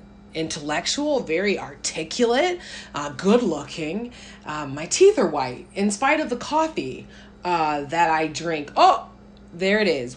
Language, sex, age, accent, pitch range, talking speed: English, female, 30-49, American, 140-200 Hz, 140 wpm